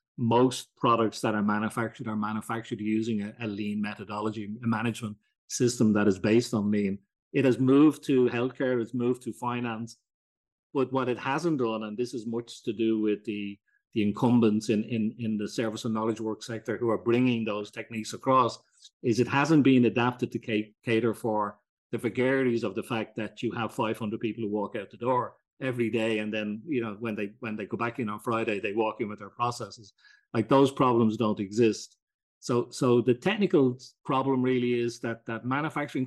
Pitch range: 110-125 Hz